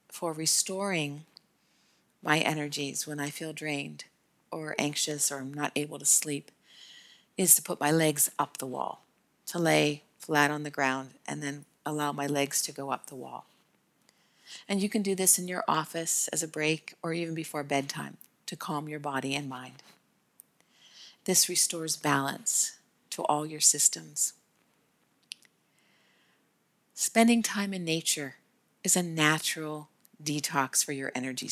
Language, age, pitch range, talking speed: English, 50-69, 145-175 Hz, 150 wpm